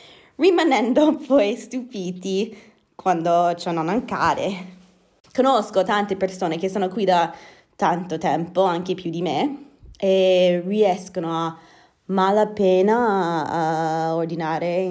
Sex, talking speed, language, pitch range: female, 105 wpm, Italian, 170-200 Hz